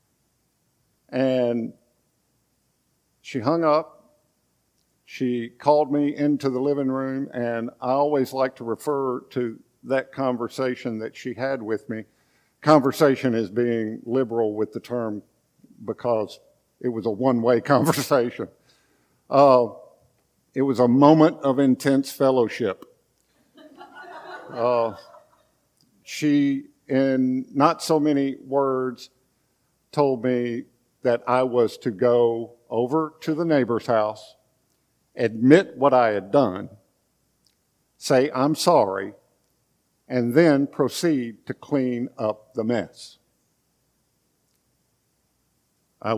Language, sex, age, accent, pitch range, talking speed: English, male, 50-69, American, 110-135 Hz, 105 wpm